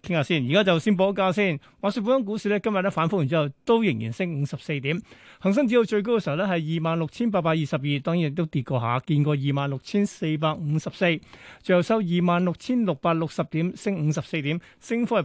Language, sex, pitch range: Chinese, male, 145-185 Hz